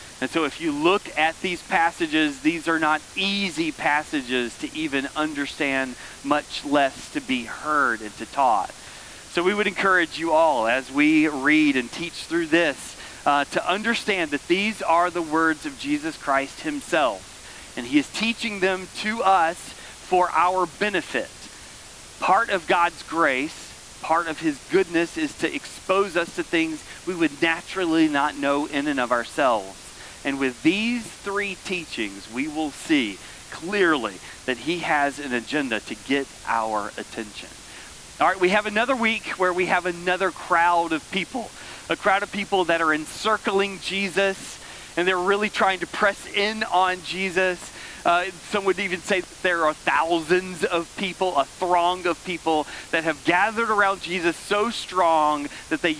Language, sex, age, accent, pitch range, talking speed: English, male, 30-49, American, 155-200 Hz, 165 wpm